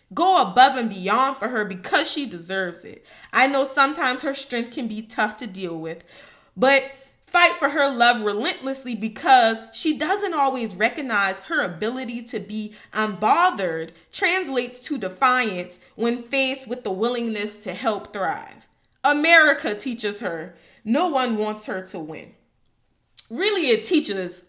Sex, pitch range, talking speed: female, 205-275 Hz, 145 wpm